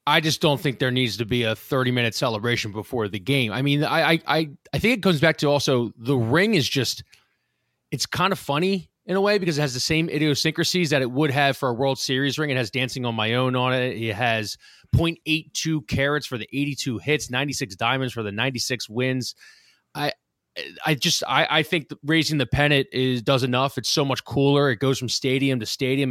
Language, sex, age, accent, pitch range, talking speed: English, male, 20-39, American, 120-145 Hz, 225 wpm